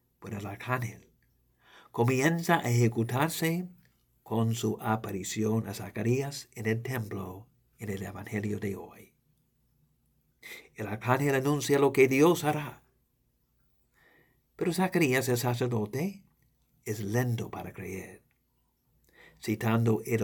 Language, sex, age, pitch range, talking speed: English, male, 60-79, 110-145 Hz, 105 wpm